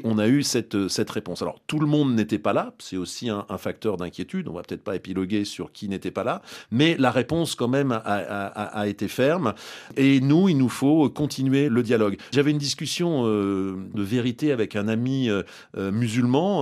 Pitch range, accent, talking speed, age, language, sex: 105-140 Hz, French, 215 wpm, 40-59, French, male